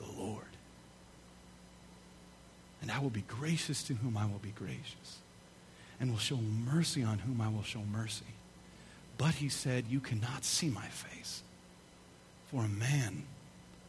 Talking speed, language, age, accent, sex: 145 wpm, English, 40-59, American, male